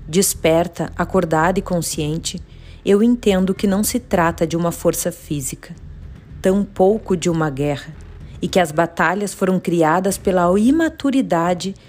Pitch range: 160-200 Hz